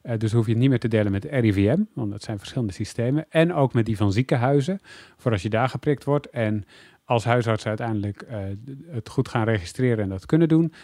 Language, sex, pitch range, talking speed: Dutch, male, 105-135 Hz, 225 wpm